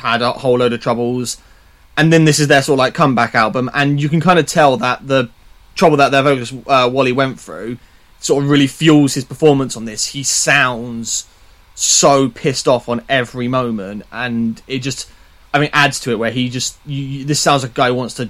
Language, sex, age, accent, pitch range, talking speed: English, male, 20-39, British, 120-140 Hz, 225 wpm